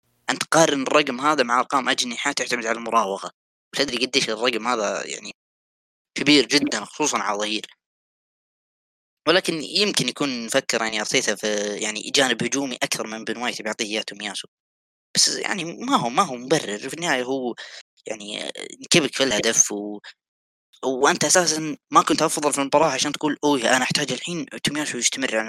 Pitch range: 110-145 Hz